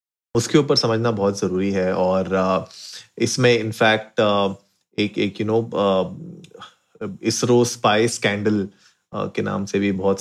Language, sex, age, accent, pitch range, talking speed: Hindi, male, 30-49, native, 100-120 Hz, 120 wpm